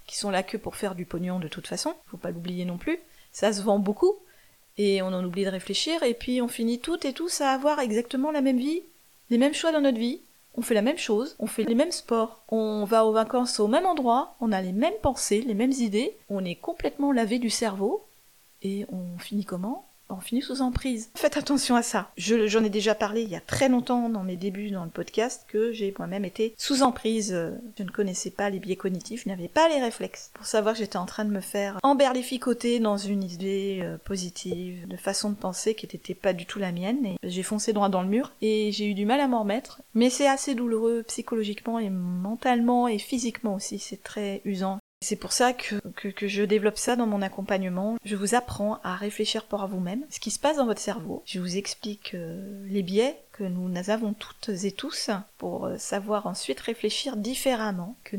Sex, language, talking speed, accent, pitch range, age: female, French, 225 wpm, French, 195-245 Hz, 30-49